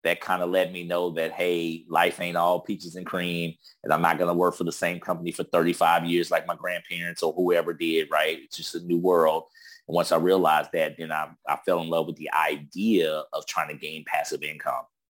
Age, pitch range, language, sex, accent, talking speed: 30-49, 80-95 Hz, English, male, American, 240 wpm